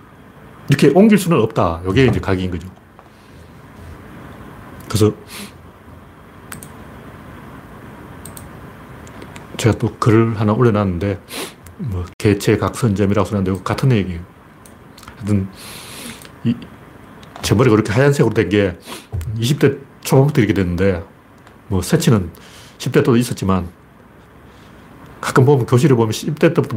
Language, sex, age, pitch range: Korean, male, 40-59, 95-135 Hz